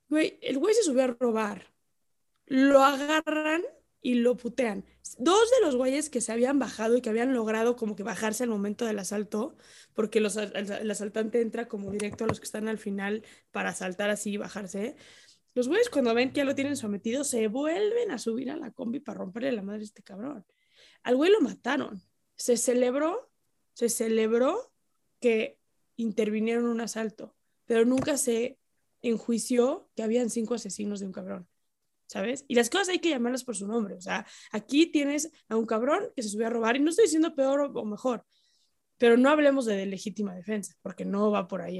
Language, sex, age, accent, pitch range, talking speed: English, female, 20-39, Spanish, 220-275 Hz, 195 wpm